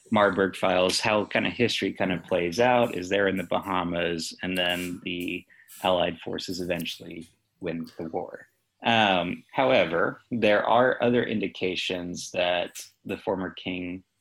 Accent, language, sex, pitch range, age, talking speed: American, English, male, 90-100 Hz, 30-49, 145 wpm